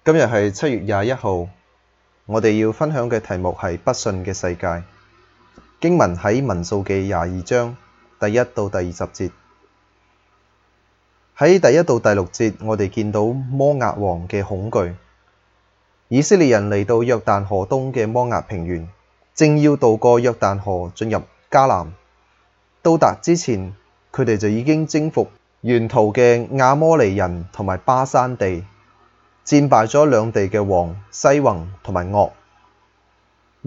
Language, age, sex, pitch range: Chinese, 20-39, male, 95-125 Hz